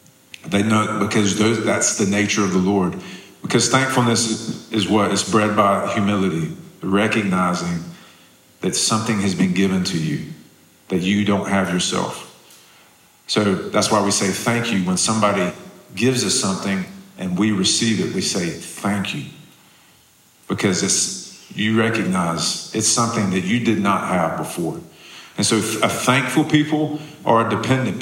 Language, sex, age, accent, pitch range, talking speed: English, male, 40-59, American, 100-120 Hz, 150 wpm